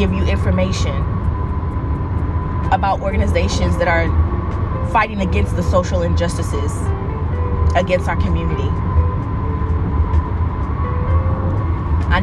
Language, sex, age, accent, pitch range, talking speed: English, female, 20-39, American, 85-100 Hz, 80 wpm